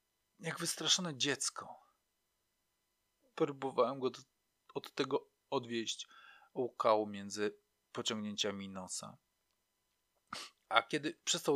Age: 40-59